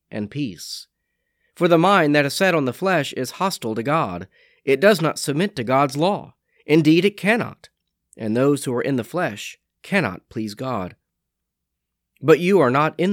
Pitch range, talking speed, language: 120-170 Hz, 185 wpm, English